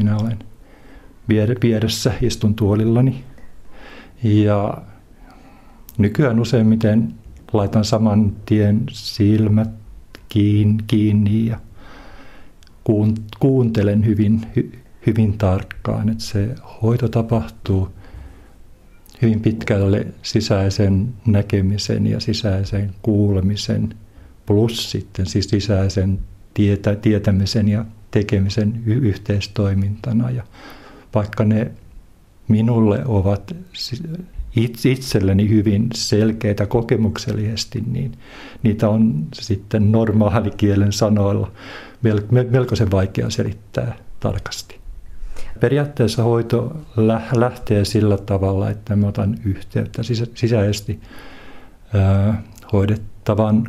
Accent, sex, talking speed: native, male, 75 wpm